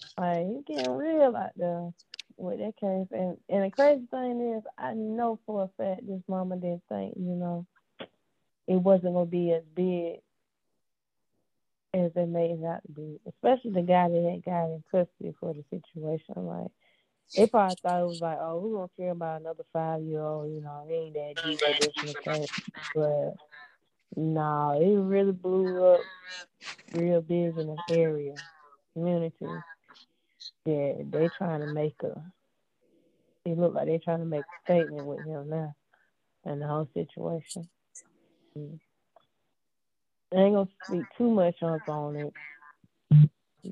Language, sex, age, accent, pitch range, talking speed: English, female, 20-39, American, 155-185 Hz, 165 wpm